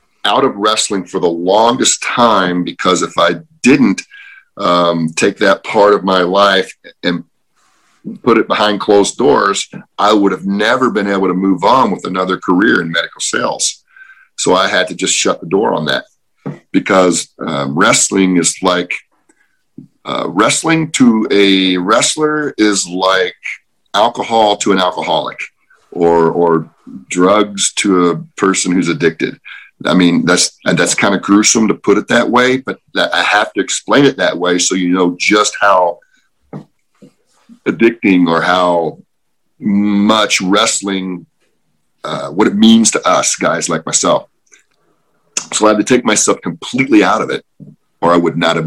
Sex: male